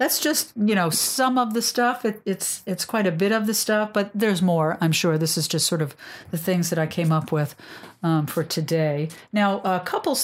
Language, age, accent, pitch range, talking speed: English, 50-69, American, 165-200 Hz, 235 wpm